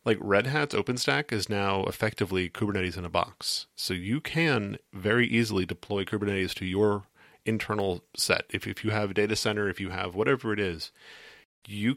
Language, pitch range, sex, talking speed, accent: English, 95-110 Hz, male, 180 wpm, American